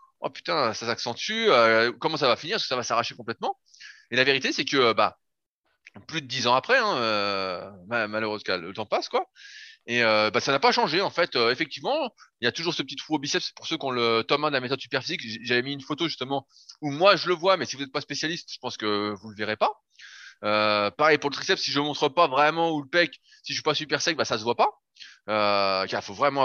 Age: 20-39